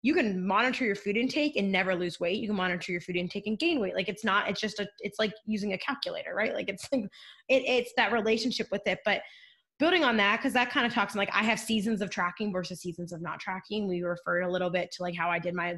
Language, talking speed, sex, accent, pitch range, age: English, 270 wpm, female, American, 180-230 Hz, 20-39